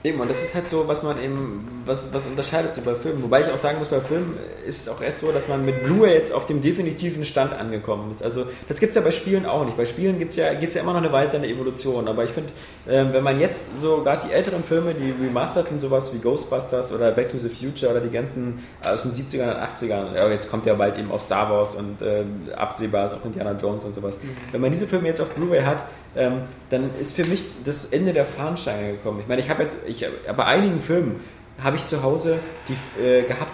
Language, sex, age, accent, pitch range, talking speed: German, male, 20-39, German, 125-160 Hz, 255 wpm